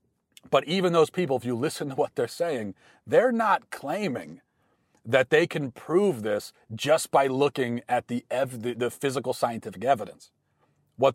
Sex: male